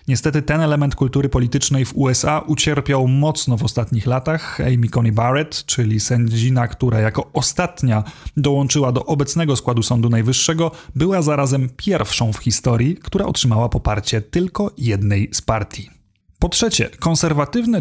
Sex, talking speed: male, 140 wpm